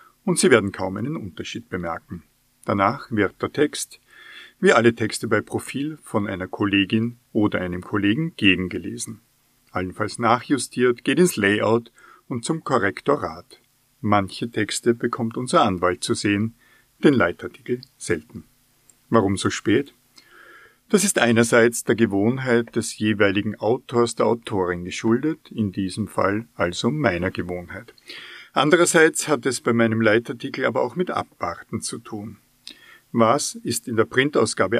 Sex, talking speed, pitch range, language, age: male, 135 wpm, 100-125 Hz, German, 50-69